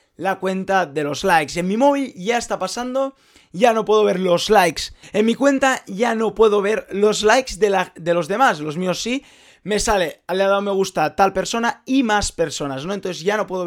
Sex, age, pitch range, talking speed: male, 20-39, 170-235 Hz, 225 wpm